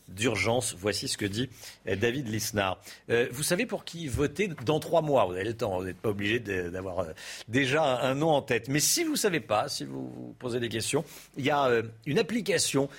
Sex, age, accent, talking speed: male, 50-69, French, 215 wpm